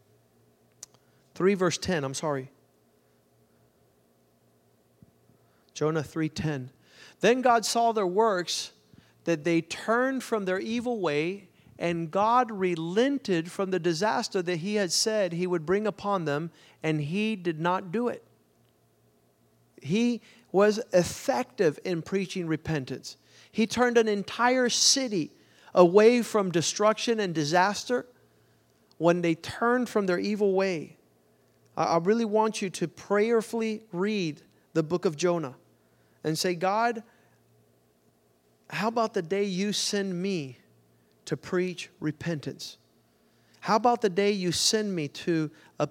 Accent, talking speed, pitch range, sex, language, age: American, 125 wpm, 135-205 Hz, male, English, 40-59